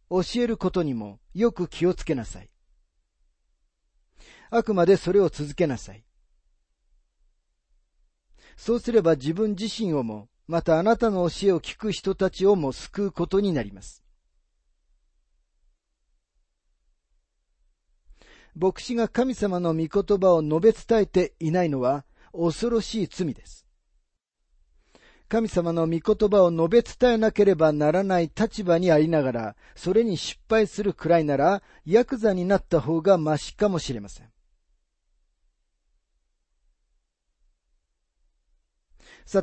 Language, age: Japanese, 40-59